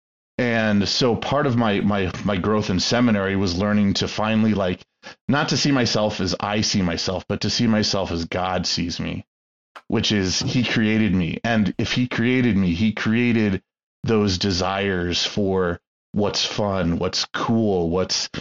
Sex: male